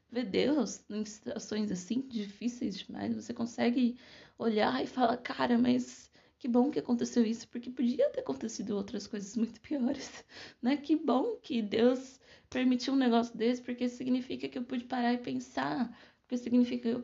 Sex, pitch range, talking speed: female, 210-245 Hz, 170 wpm